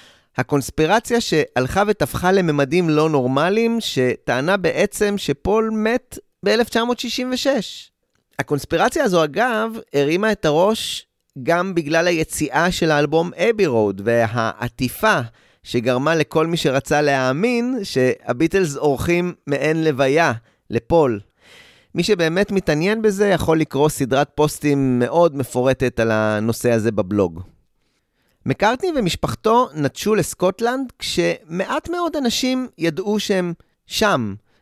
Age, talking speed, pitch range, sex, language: 30-49, 100 wpm, 135-210 Hz, male, Hebrew